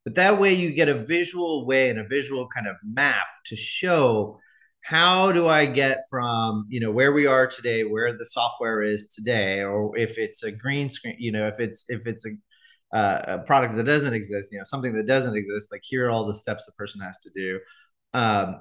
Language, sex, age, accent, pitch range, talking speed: Hindi, male, 30-49, American, 110-150 Hz, 225 wpm